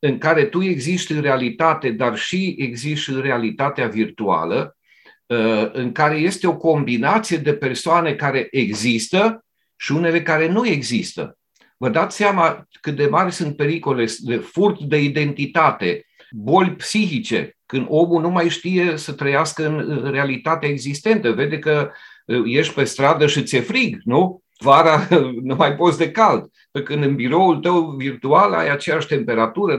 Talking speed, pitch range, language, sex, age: 150 wpm, 125-165 Hz, Romanian, male, 50-69